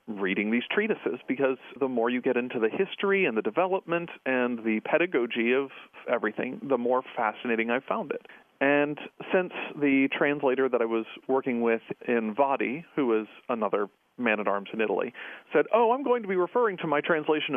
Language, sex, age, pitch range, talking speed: English, male, 40-59, 115-165 Hz, 180 wpm